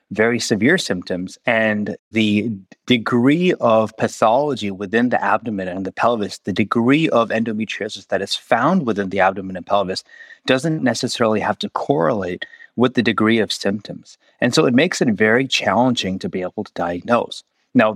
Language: English